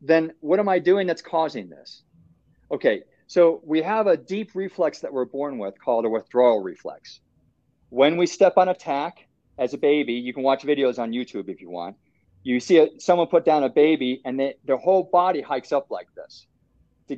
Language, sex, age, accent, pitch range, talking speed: English, male, 40-59, American, 135-185 Hz, 205 wpm